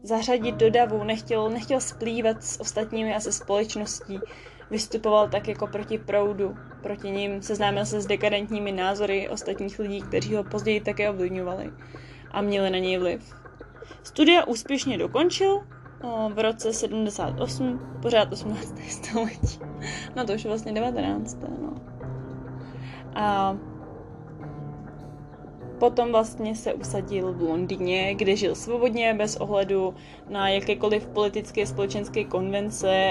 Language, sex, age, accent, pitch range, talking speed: Czech, female, 20-39, native, 190-225 Hz, 120 wpm